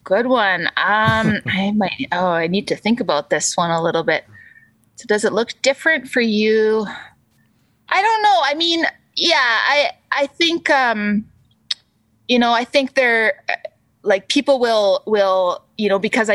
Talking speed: 165 wpm